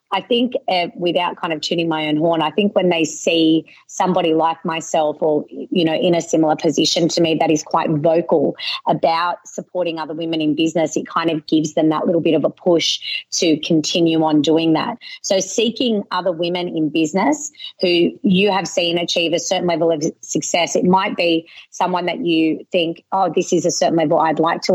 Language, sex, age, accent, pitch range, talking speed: English, female, 30-49, Australian, 160-185 Hz, 205 wpm